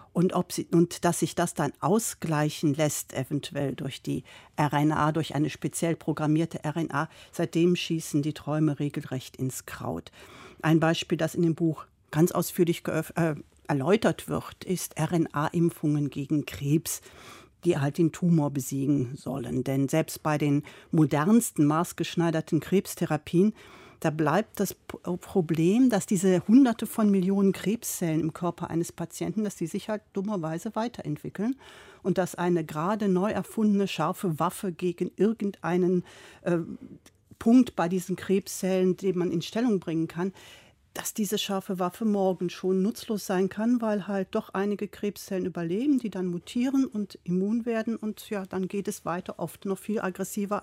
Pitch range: 155-200 Hz